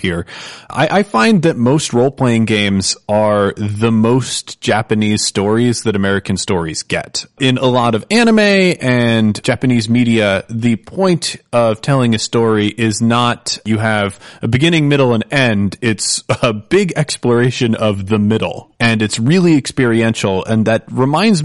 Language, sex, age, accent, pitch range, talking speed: English, male, 30-49, American, 105-130 Hz, 150 wpm